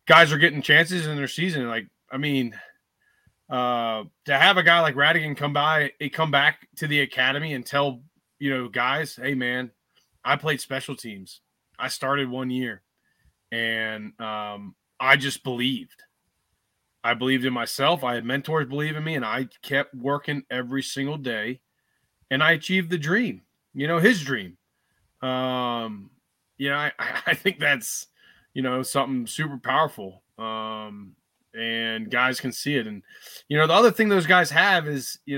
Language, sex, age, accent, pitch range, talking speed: English, male, 30-49, American, 125-150 Hz, 170 wpm